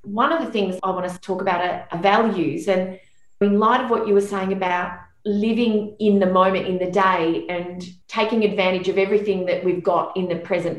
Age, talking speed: 30-49, 220 wpm